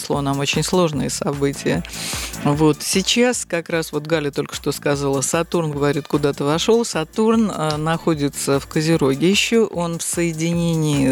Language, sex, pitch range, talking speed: Russian, female, 140-175 Hz, 140 wpm